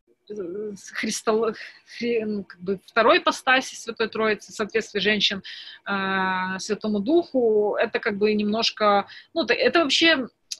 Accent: native